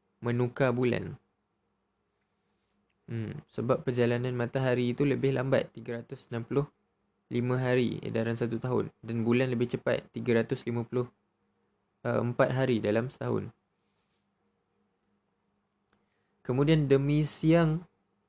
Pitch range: 115-135 Hz